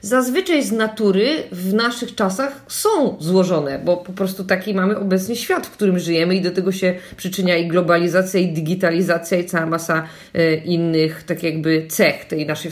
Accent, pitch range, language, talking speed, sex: native, 185-240 Hz, Polish, 175 wpm, female